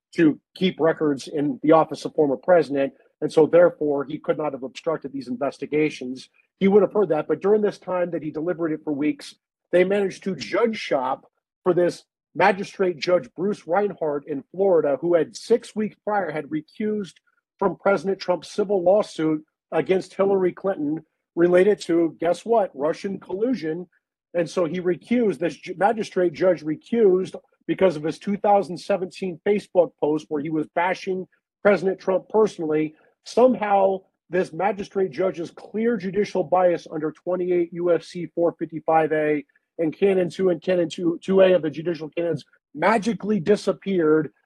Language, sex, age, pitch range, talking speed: English, male, 50-69, 155-195 Hz, 155 wpm